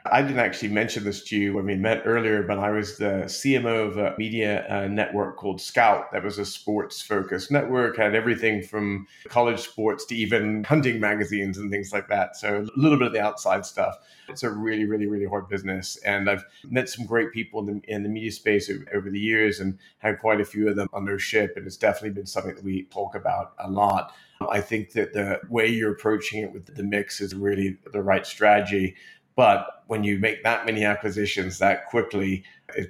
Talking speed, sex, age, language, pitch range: 215 wpm, male, 30-49, English, 100-110 Hz